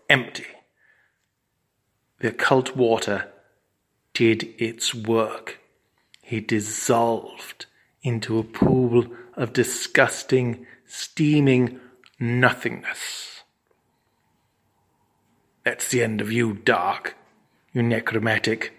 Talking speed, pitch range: 75 wpm, 110-130 Hz